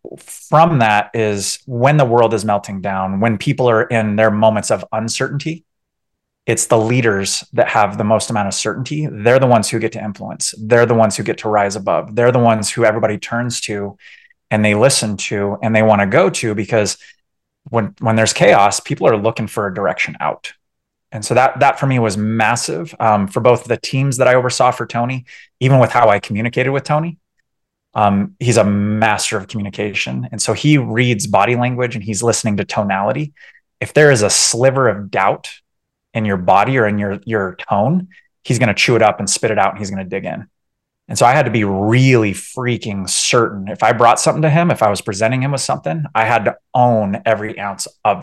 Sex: male